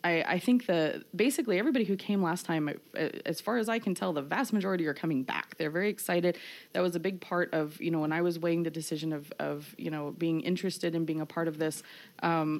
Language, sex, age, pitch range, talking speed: English, female, 20-39, 155-175 Hz, 250 wpm